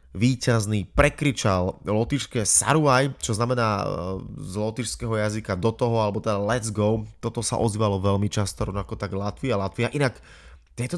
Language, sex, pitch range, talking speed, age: Slovak, male, 105-130 Hz, 150 wpm, 20-39